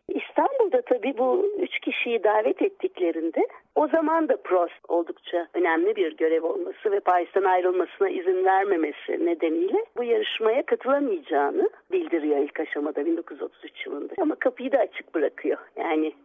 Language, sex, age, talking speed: Turkish, female, 60-79, 135 wpm